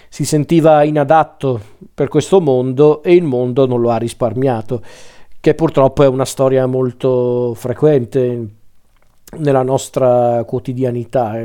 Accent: native